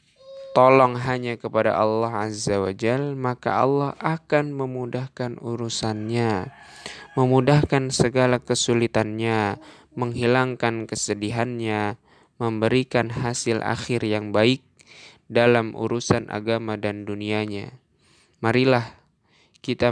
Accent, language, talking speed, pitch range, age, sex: native, Indonesian, 85 wpm, 105-125 Hz, 10-29, male